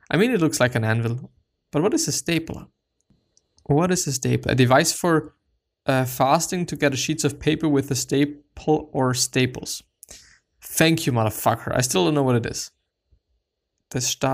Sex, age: male, 20-39